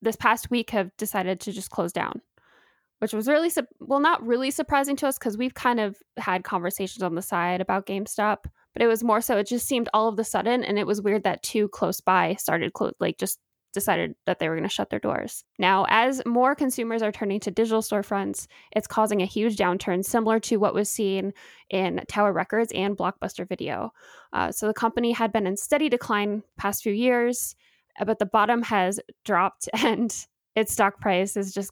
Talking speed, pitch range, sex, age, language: 205 wpm, 195-235 Hz, female, 10-29, English